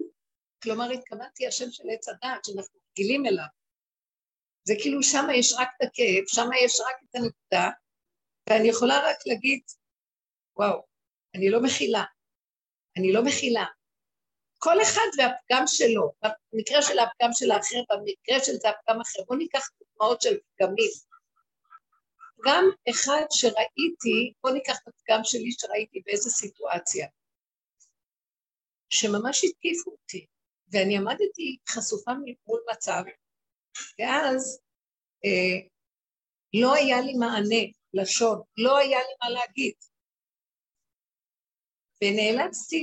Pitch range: 220-305 Hz